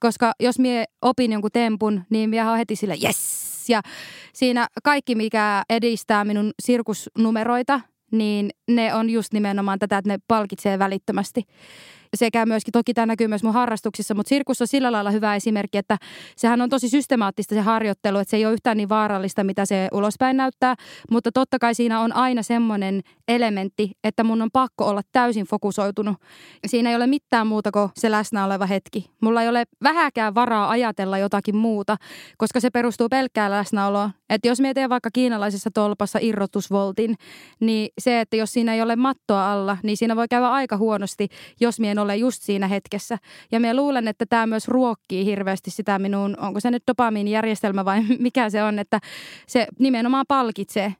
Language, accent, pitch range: Finnish, native, 205-235 Hz